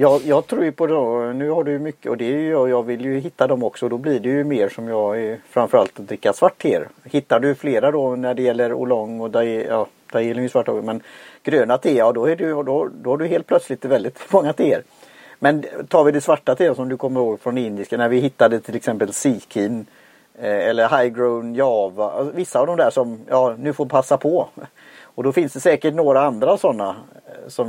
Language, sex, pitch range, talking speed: Swedish, male, 115-140 Hz, 235 wpm